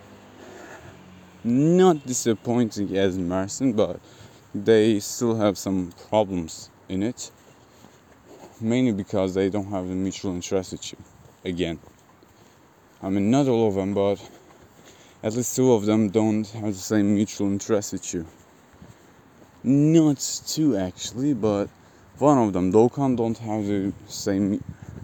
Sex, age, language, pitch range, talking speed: male, 20-39, English, 95-120 Hz, 125 wpm